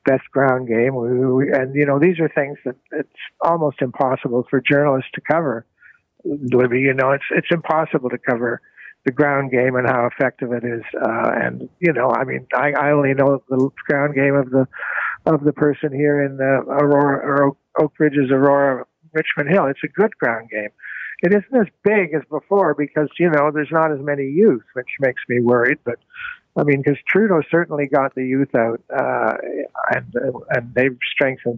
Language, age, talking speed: English, 60-79, 190 wpm